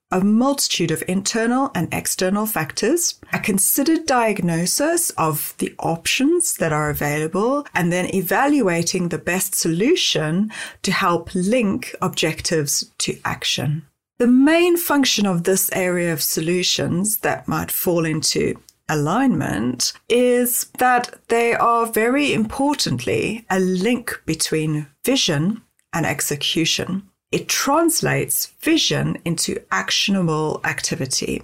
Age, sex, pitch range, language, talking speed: 30-49, female, 165-240 Hz, English, 115 wpm